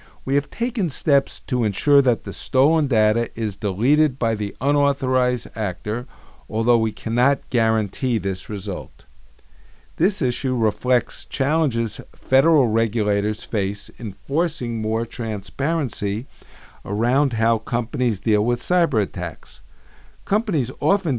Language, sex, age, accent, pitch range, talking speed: English, male, 50-69, American, 105-135 Hz, 120 wpm